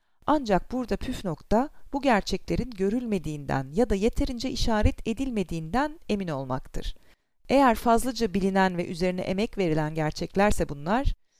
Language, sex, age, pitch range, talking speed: Turkish, female, 40-59, 175-240 Hz, 120 wpm